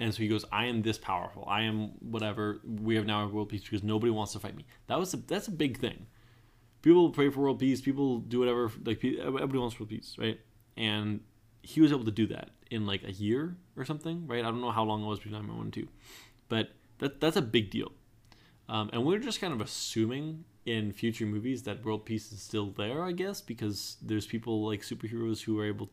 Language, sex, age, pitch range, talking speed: English, male, 20-39, 110-125 Hz, 235 wpm